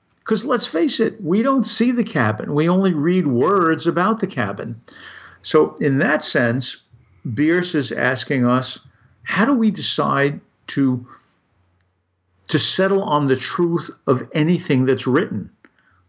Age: 50-69